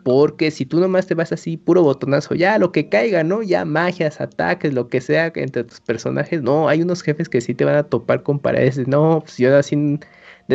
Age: 30-49